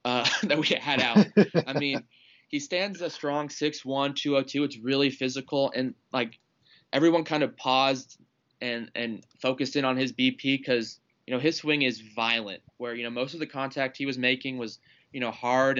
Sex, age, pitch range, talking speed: male, 20-39, 120-140 Hz, 205 wpm